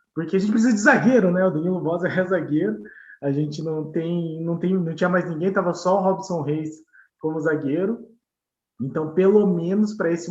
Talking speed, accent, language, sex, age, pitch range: 200 wpm, Brazilian, Portuguese, male, 20-39, 160-215 Hz